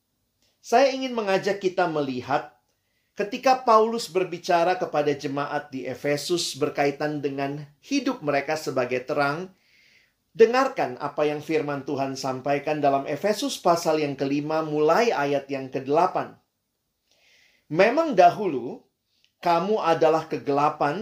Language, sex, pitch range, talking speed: Indonesian, male, 145-200 Hz, 110 wpm